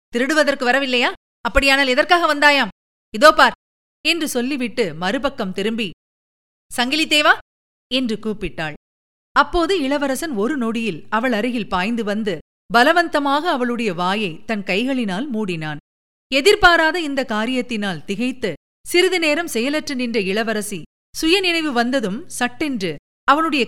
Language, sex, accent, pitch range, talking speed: Tamil, female, native, 210-290 Hz, 100 wpm